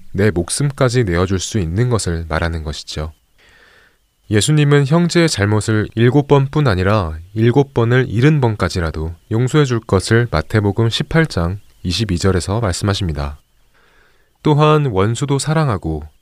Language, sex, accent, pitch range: Korean, male, native, 85-125 Hz